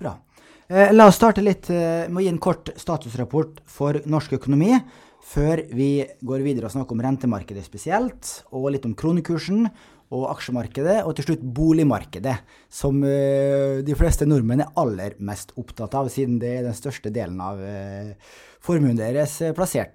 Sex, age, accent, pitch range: male, 20-39, Norwegian, 115-155 Hz